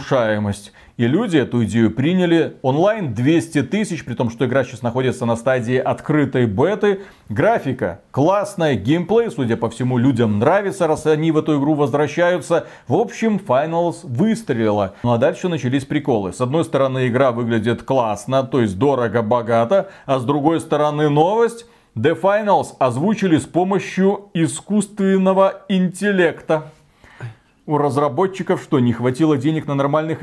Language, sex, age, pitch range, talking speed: Russian, male, 40-59, 135-190 Hz, 140 wpm